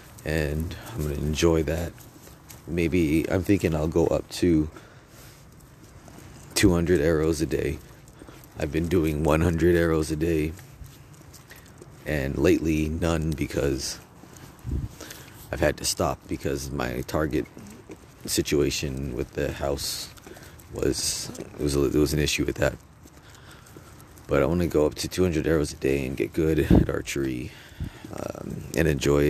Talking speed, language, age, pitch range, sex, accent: 135 wpm, English, 30-49, 75-85 Hz, male, American